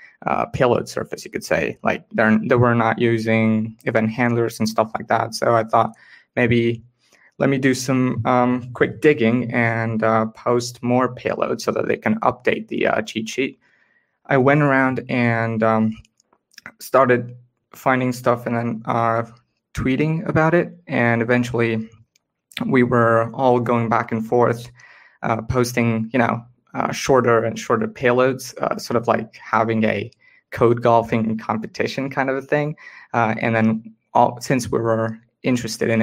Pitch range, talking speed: 110-125 Hz, 160 wpm